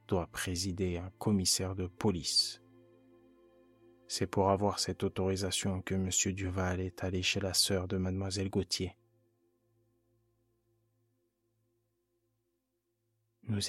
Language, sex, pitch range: French, male, 95-105 Hz